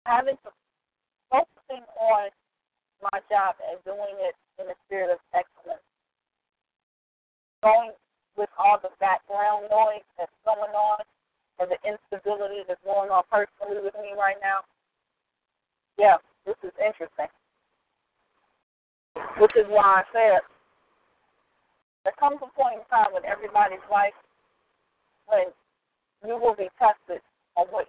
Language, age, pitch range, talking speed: English, 40-59, 185-230 Hz, 125 wpm